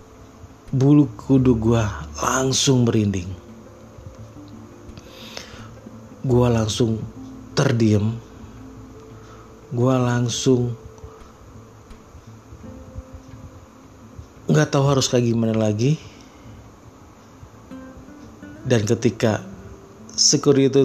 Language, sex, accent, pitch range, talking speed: Indonesian, male, native, 105-120 Hz, 55 wpm